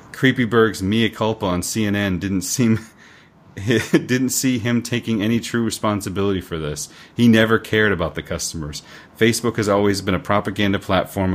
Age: 30-49